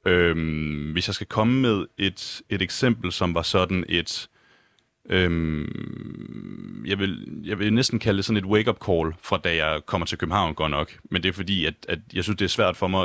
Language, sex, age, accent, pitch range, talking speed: Danish, male, 30-49, native, 85-105 Hz, 215 wpm